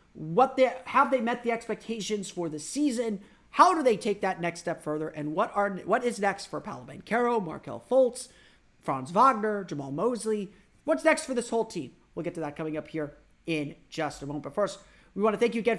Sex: male